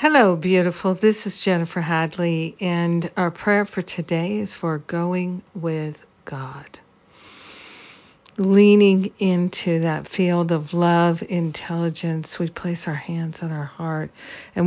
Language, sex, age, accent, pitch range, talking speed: English, female, 50-69, American, 165-180 Hz, 125 wpm